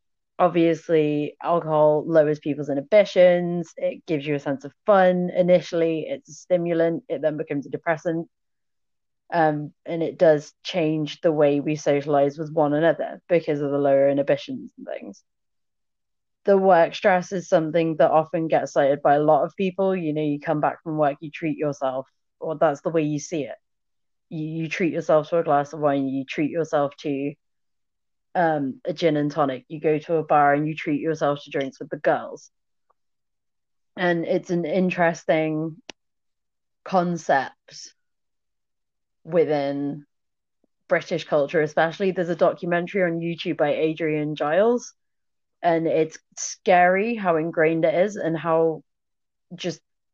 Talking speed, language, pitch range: 155 wpm, English, 150-175 Hz